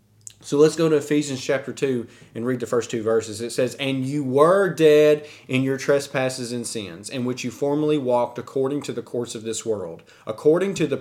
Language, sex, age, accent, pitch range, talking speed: English, male, 30-49, American, 125-155 Hz, 215 wpm